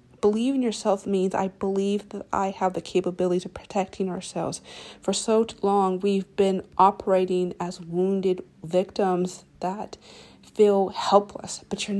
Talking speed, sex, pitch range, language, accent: 140 wpm, female, 190-215 Hz, English, American